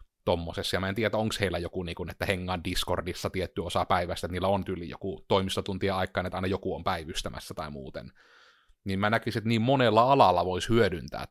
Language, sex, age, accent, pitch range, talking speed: Finnish, male, 30-49, native, 90-105 Hz, 195 wpm